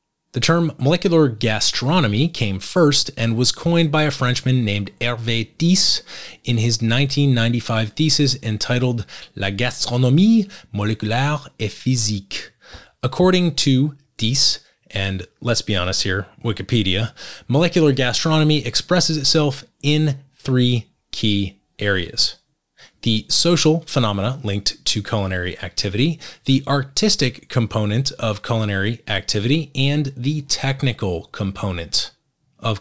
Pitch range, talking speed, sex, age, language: 105-145 Hz, 110 wpm, male, 20-39, English